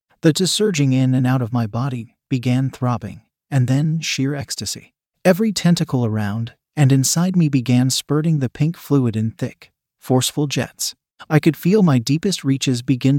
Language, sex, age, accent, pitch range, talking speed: English, male, 40-59, American, 125-155 Hz, 165 wpm